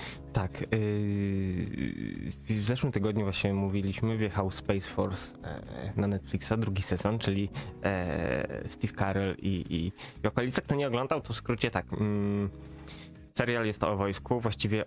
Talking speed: 150 wpm